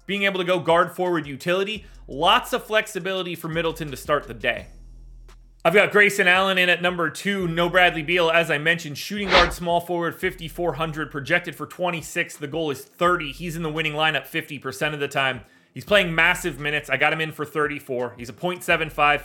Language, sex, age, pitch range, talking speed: English, male, 30-49, 140-185 Hz, 200 wpm